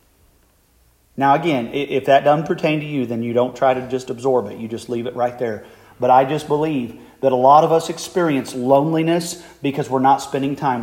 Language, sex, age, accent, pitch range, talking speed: English, male, 40-59, American, 125-165 Hz, 210 wpm